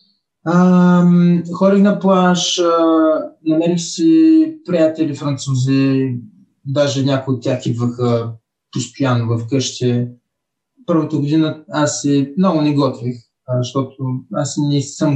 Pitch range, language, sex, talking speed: 130-180 Hz, Bulgarian, male, 105 wpm